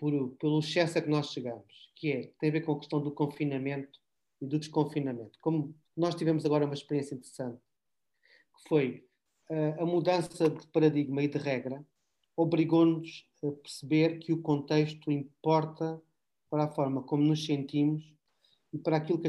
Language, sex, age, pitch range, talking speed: Portuguese, male, 40-59, 145-170 Hz, 165 wpm